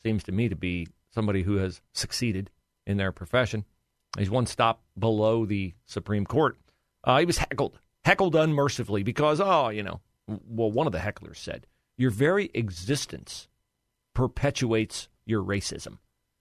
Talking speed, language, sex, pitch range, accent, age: 150 wpm, English, male, 100-135 Hz, American, 40-59